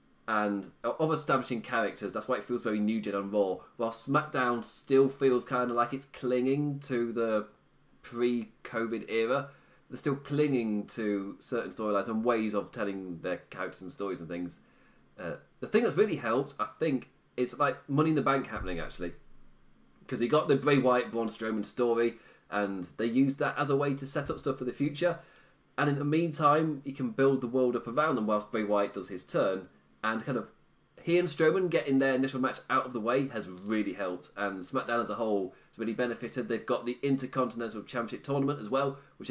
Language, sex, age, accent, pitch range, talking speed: English, male, 30-49, British, 110-145 Hz, 200 wpm